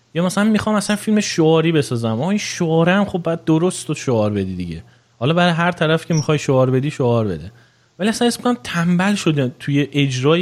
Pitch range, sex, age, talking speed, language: 115-155 Hz, male, 30-49, 225 wpm, Persian